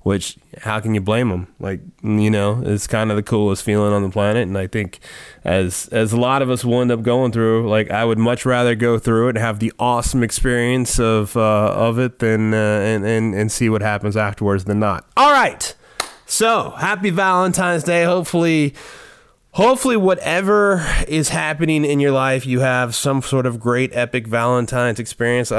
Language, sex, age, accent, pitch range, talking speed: English, male, 20-39, American, 115-150 Hz, 195 wpm